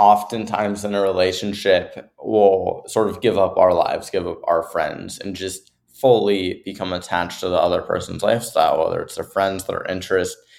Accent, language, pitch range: American, English, 95-120 Hz